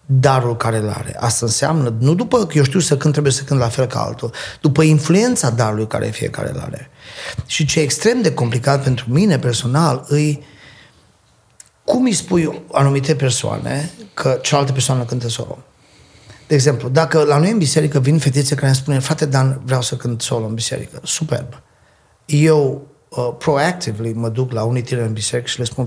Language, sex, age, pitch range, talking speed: Romanian, male, 30-49, 120-150 Hz, 185 wpm